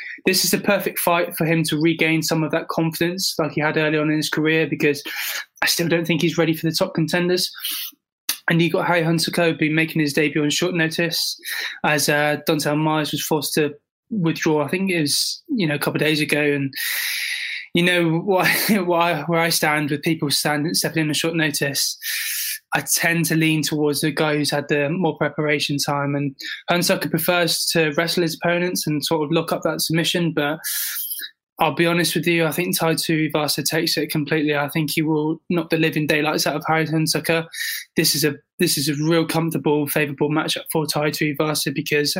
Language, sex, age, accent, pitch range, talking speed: English, male, 20-39, British, 150-170 Hz, 210 wpm